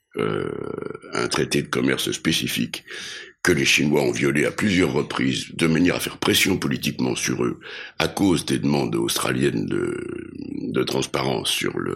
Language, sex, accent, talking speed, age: French, male, French, 155 wpm, 60-79